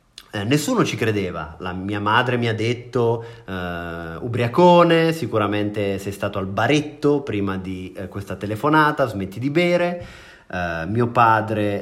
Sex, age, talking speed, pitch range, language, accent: male, 30-49, 140 wpm, 105-140 Hz, Italian, native